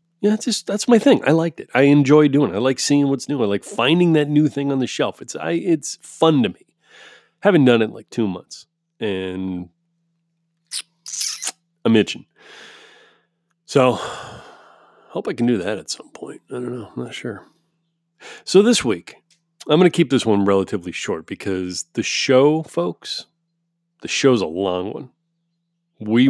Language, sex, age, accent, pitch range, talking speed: English, male, 30-49, American, 115-170 Hz, 180 wpm